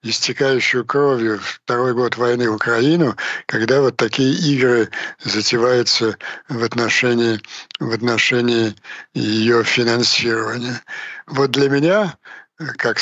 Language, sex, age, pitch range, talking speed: Ukrainian, male, 60-79, 115-145 Hz, 100 wpm